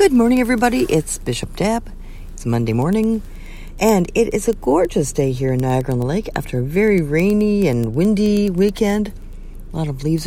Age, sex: 50-69, female